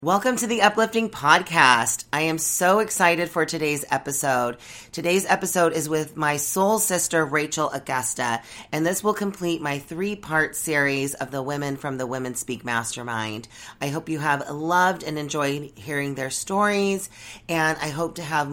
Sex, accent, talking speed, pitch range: female, American, 165 wpm, 130-170 Hz